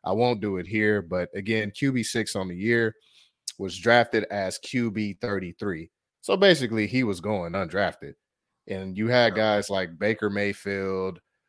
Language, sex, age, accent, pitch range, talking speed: English, male, 30-49, American, 95-125 Hz, 145 wpm